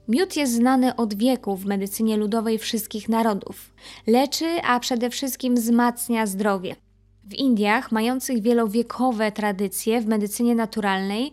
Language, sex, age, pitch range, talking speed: Polish, female, 20-39, 205-240 Hz, 125 wpm